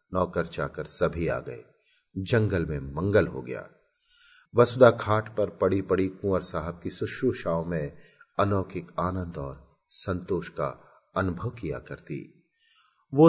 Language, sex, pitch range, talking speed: Hindi, male, 90-150 Hz, 120 wpm